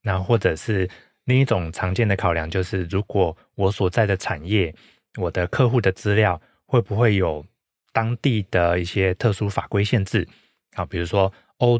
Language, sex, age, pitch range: Chinese, male, 20-39, 90-110 Hz